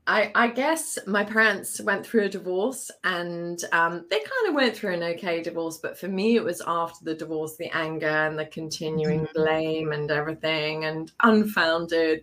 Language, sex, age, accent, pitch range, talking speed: English, female, 20-39, British, 170-235 Hz, 180 wpm